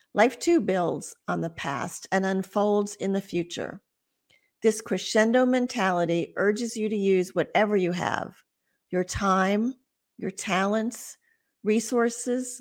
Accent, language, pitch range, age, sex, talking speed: American, English, 185-230 Hz, 50-69, female, 125 wpm